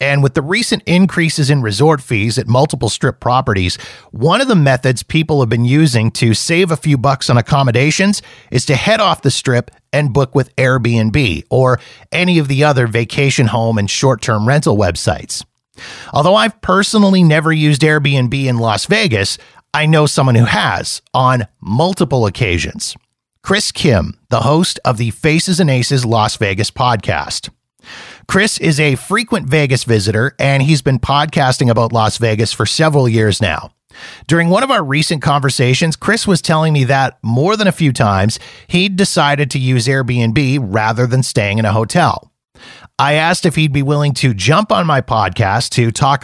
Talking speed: 175 wpm